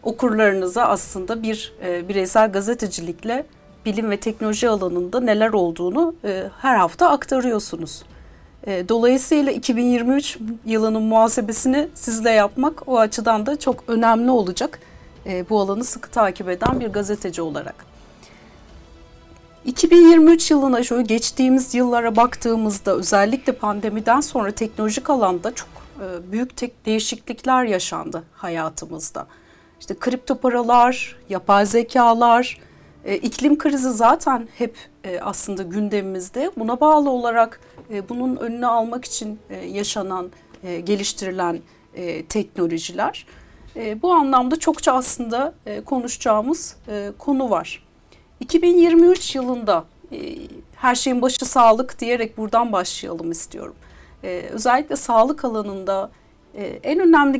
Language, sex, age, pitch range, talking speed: Turkish, female, 40-59, 195-255 Hz, 95 wpm